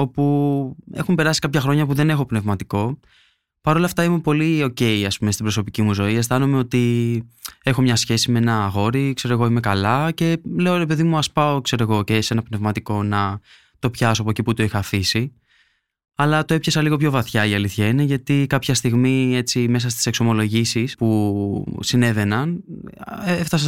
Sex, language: male, Greek